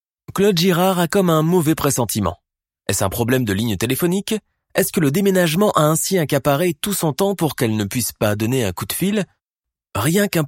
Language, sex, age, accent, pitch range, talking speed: French, male, 30-49, French, 110-175 Hz, 200 wpm